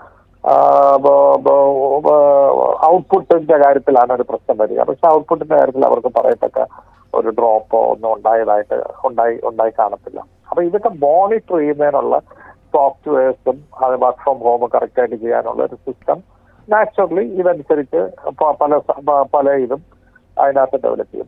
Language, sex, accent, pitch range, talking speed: Malayalam, male, native, 130-185 Hz, 110 wpm